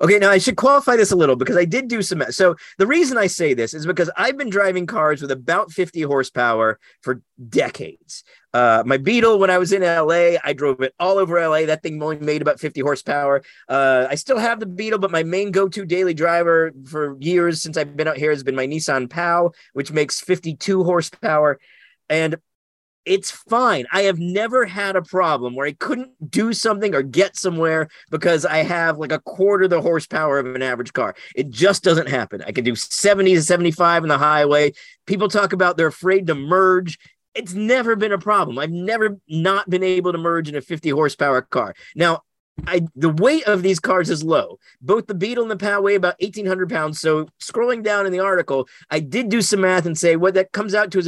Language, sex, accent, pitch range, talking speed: English, male, American, 150-200 Hz, 215 wpm